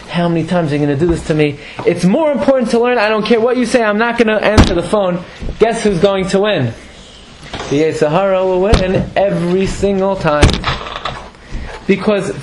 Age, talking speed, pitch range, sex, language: 20-39, 205 wpm, 150-195 Hz, male, English